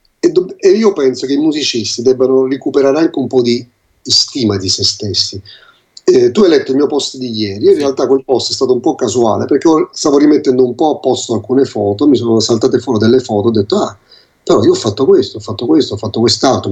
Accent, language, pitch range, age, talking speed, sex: native, Italian, 110-145 Hz, 30-49, 225 wpm, male